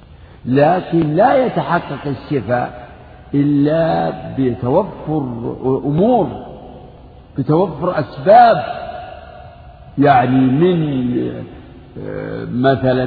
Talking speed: 55 wpm